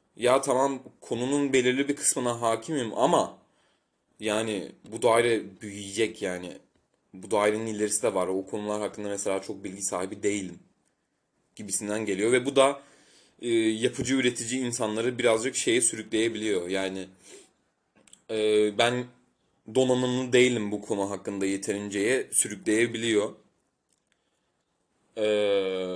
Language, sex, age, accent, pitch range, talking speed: Turkish, male, 30-49, native, 105-130 Hz, 115 wpm